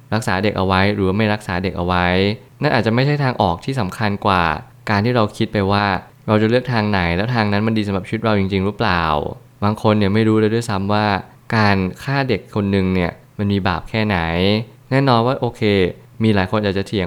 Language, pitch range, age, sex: Thai, 100-120 Hz, 20-39, male